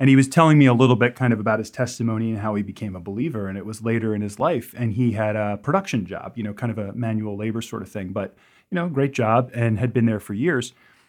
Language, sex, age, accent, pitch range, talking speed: English, male, 30-49, American, 110-130 Hz, 285 wpm